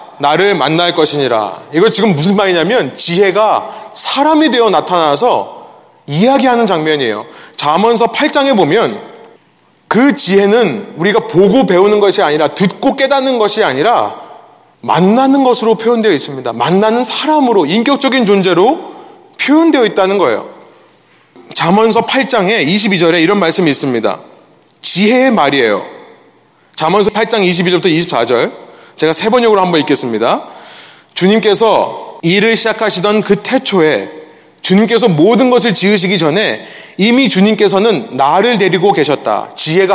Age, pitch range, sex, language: 30-49, 185-235 Hz, male, Korean